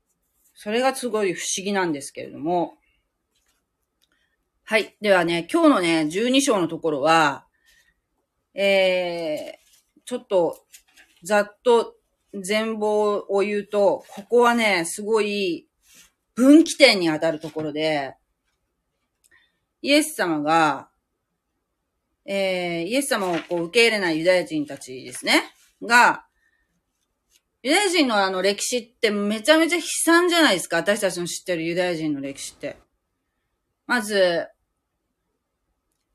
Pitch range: 165-245 Hz